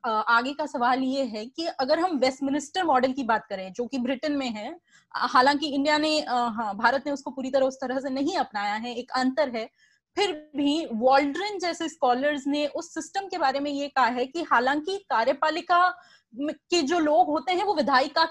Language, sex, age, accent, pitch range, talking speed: Hindi, female, 20-39, native, 255-335 Hz, 200 wpm